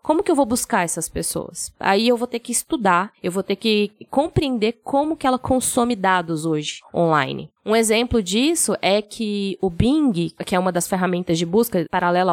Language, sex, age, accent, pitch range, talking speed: Portuguese, female, 20-39, Brazilian, 185-245 Hz, 195 wpm